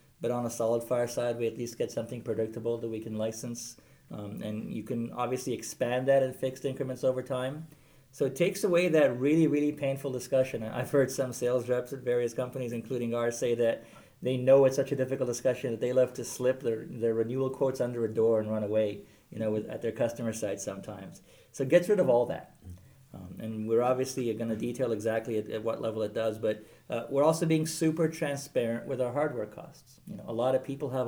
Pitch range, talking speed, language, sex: 115-130 Hz, 225 wpm, English, male